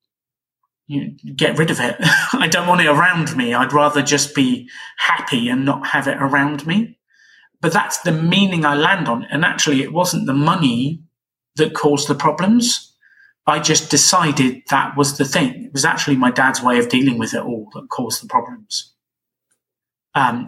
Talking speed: 180 wpm